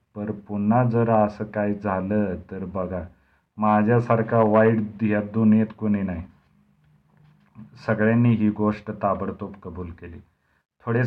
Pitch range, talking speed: 95-110 Hz, 80 wpm